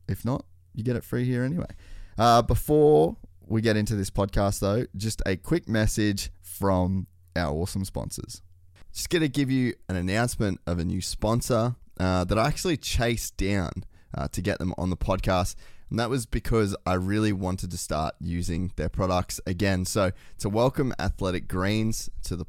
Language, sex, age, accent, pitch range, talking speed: English, male, 20-39, Australian, 90-110 Hz, 180 wpm